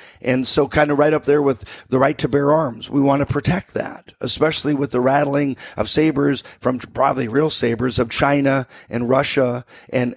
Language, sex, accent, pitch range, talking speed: English, male, American, 135-170 Hz, 195 wpm